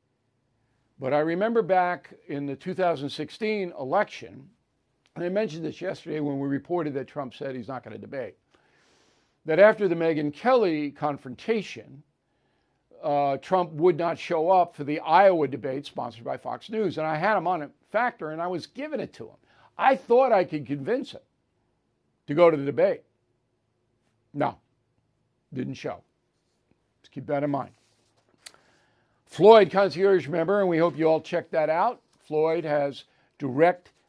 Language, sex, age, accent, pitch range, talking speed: English, male, 60-79, American, 140-180 Hz, 160 wpm